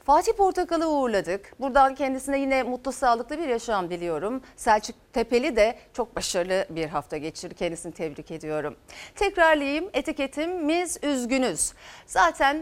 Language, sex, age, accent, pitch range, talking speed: Turkish, female, 40-59, native, 230-330 Hz, 125 wpm